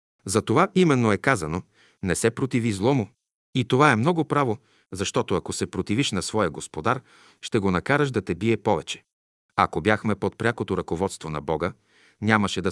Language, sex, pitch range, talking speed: Bulgarian, male, 95-120 Hz, 170 wpm